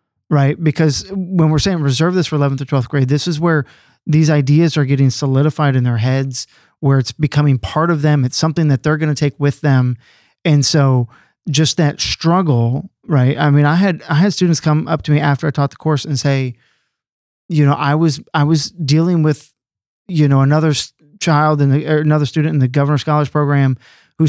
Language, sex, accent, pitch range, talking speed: English, male, American, 140-165 Hz, 205 wpm